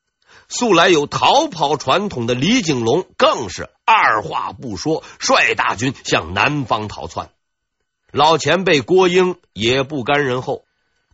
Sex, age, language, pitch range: male, 50-69, Chinese, 145-230 Hz